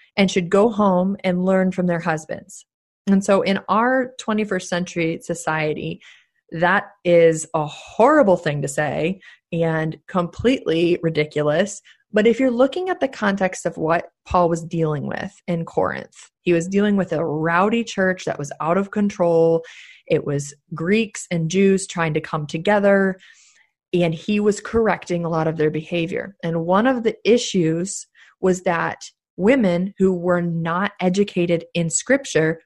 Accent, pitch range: American, 165-210 Hz